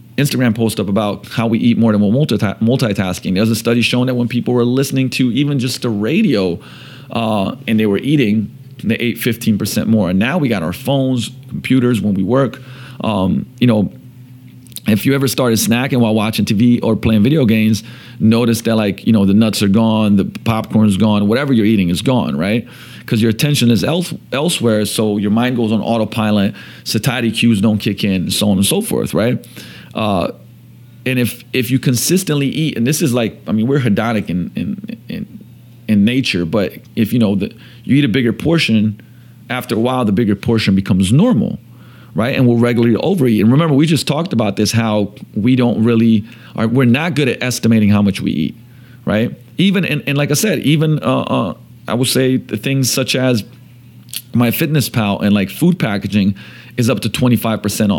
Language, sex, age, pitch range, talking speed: English, male, 40-59, 110-130 Hz, 200 wpm